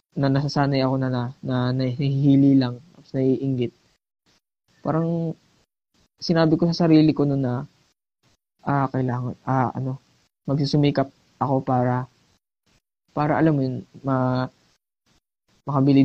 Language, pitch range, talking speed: Filipino, 130-145 Hz, 120 wpm